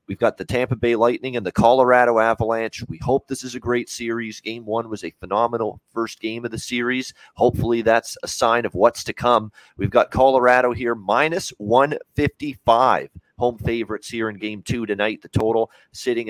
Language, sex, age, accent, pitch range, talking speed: English, male, 40-59, American, 100-120 Hz, 190 wpm